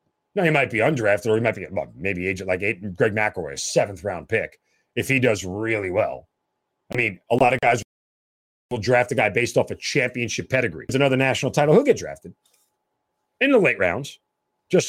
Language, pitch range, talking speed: English, 115-165 Hz, 205 wpm